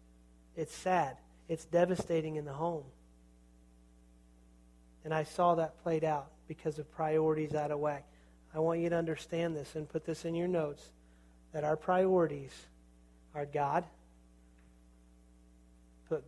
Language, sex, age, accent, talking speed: English, male, 40-59, American, 135 wpm